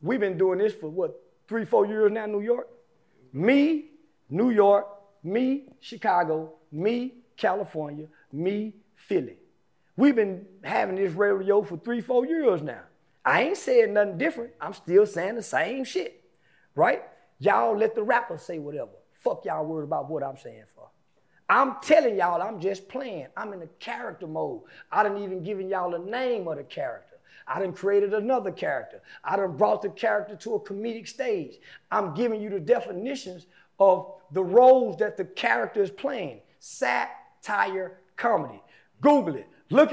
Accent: American